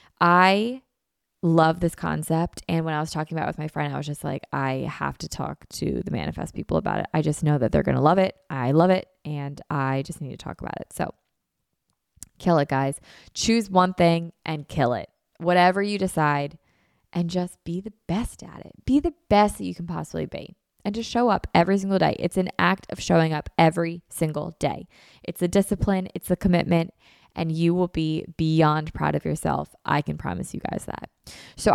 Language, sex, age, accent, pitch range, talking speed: English, female, 20-39, American, 155-185 Hz, 215 wpm